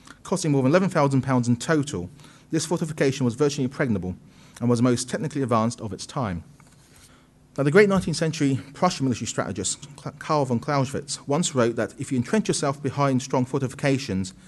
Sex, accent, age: male, British, 40-59